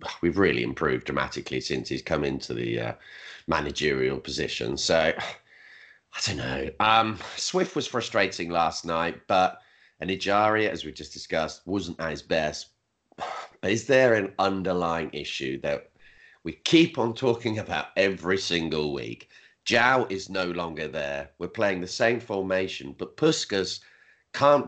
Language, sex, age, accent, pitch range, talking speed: English, male, 30-49, British, 80-110 Hz, 145 wpm